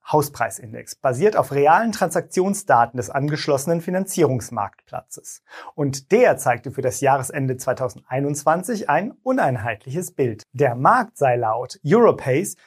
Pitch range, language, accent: 130-180 Hz, German, German